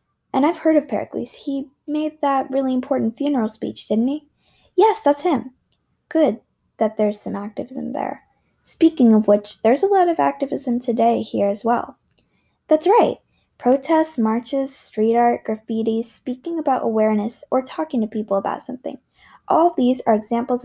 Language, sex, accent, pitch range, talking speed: English, female, American, 215-285 Hz, 165 wpm